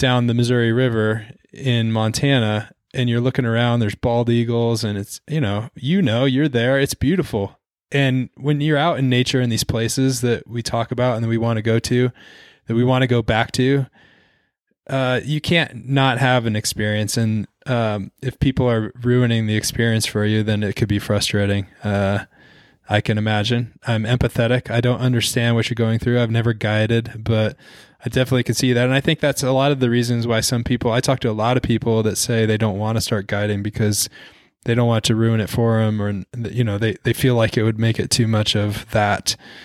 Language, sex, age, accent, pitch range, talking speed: English, male, 20-39, American, 110-125 Hz, 220 wpm